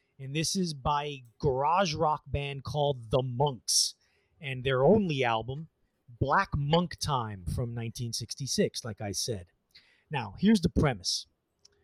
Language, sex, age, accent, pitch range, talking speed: English, male, 30-49, American, 125-165 Hz, 135 wpm